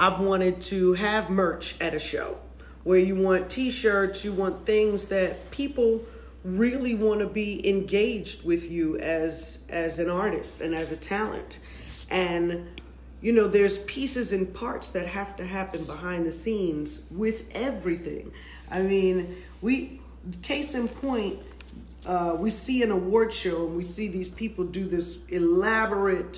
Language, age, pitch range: English, 40-59, 165-205 Hz